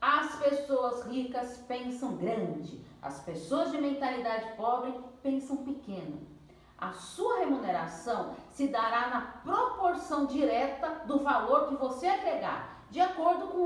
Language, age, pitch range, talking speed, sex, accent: Portuguese, 40-59, 210-285 Hz, 120 wpm, female, Brazilian